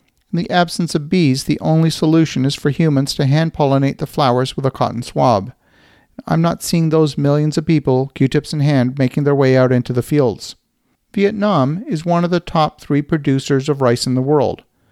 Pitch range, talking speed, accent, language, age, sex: 140-160 Hz, 195 wpm, American, English, 50-69, male